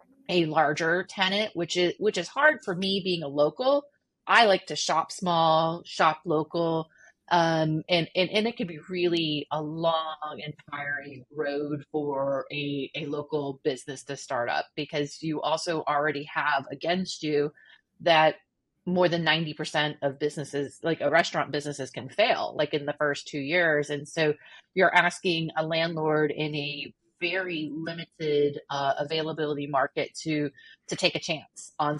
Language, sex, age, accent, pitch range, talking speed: English, female, 30-49, American, 145-170 Hz, 160 wpm